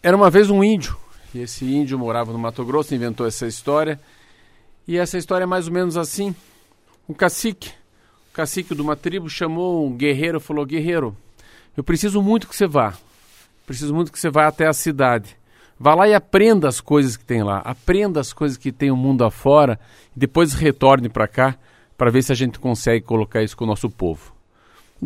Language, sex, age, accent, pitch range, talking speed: Portuguese, male, 50-69, Brazilian, 115-160 Hz, 200 wpm